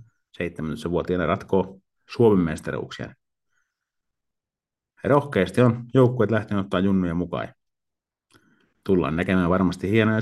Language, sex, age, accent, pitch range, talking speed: Finnish, male, 50-69, native, 95-115 Hz, 95 wpm